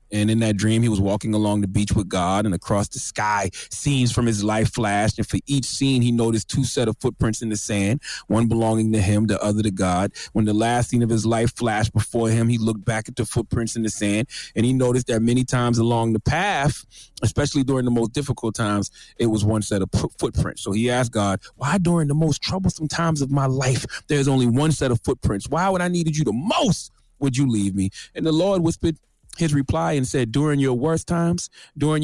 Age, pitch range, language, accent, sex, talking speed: 30-49, 105-140 Hz, English, American, male, 235 wpm